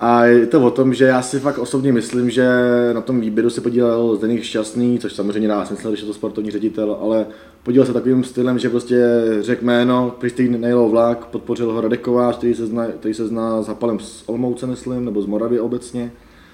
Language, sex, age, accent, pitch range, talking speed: Czech, male, 20-39, native, 120-130 Hz, 190 wpm